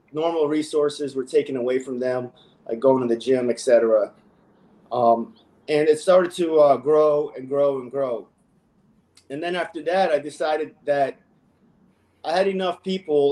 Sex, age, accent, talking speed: male, 30-49, American, 160 wpm